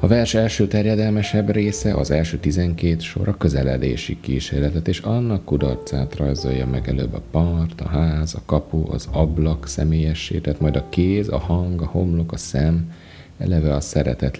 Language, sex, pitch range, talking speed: Hungarian, male, 80-95 Hz, 165 wpm